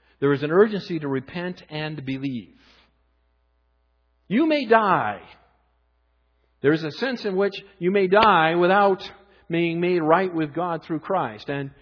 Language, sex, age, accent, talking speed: English, male, 50-69, American, 145 wpm